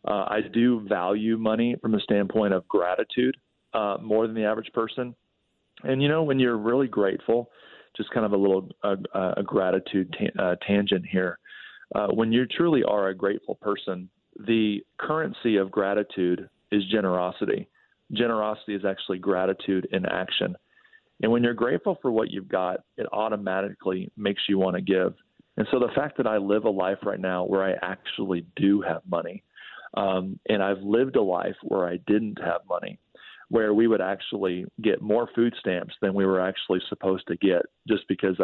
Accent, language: American, English